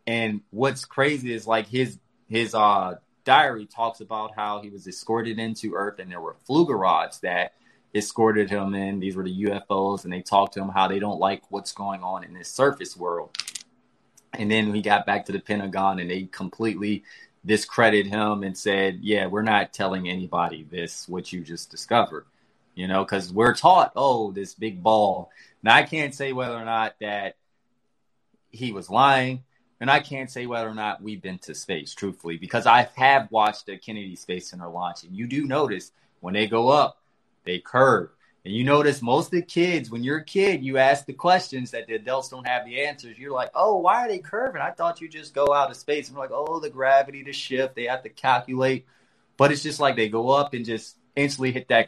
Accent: American